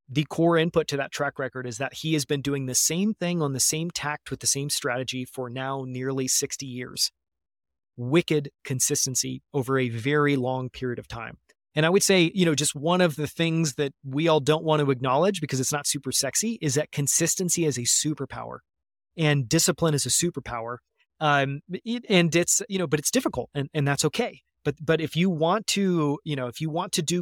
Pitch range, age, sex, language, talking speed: 135-170 Hz, 30-49, male, English, 215 wpm